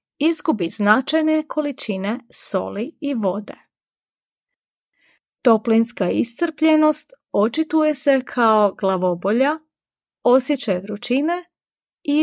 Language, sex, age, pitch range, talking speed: Croatian, female, 30-49, 215-300 Hz, 75 wpm